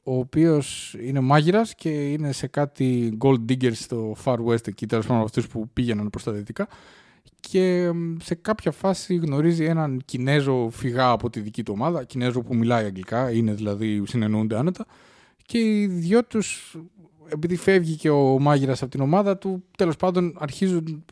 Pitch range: 125-170 Hz